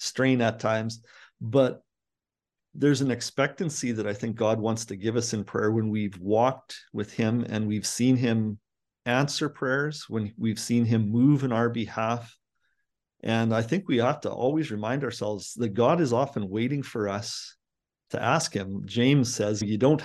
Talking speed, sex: 175 wpm, male